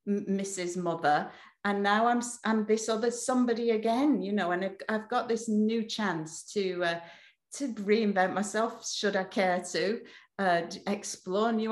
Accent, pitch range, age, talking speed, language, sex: British, 175-220 Hz, 40-59, 155 wpm, English, female